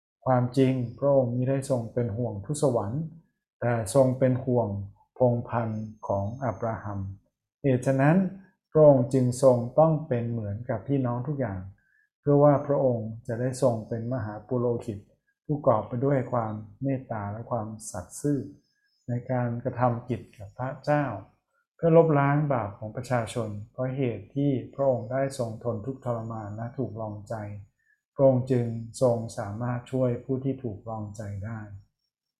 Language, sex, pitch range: Thai, male, 110-135 Hz